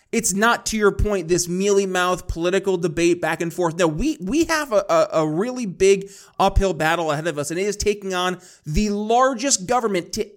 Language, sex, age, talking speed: English, male, 20-39, 210 wpm